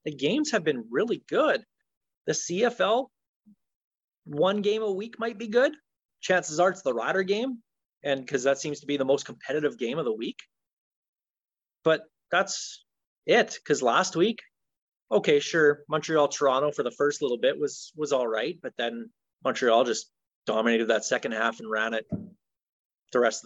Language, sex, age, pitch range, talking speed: English, male, 30-49, 125-190 Hz, 170 wpm